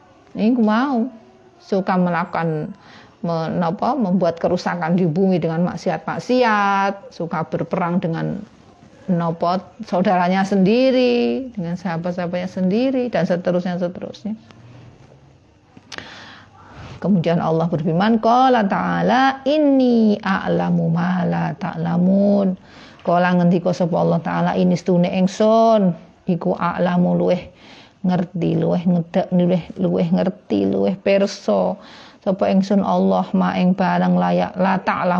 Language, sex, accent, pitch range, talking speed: Indonesian, female, native, 175-200 Hz, 95 wpm